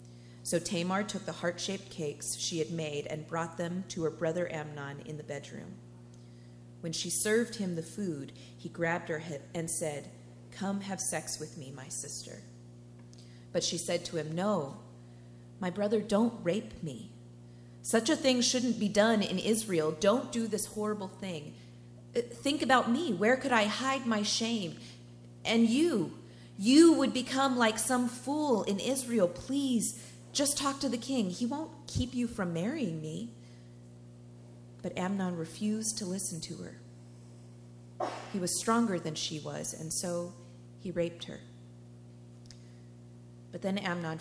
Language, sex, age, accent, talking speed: English, female, 30-49, American, 155 wpm